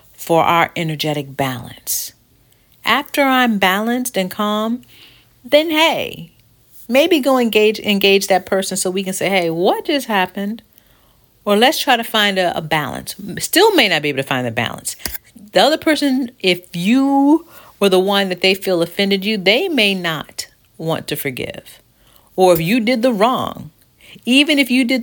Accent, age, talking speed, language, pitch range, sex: American, 50-69, 170 wpm, English, 155-225 Hz, female